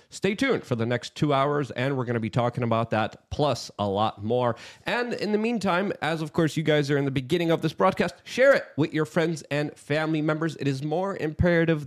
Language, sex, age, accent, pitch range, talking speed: English, male, 30-49, American, 135-170 Hz, 240 wpm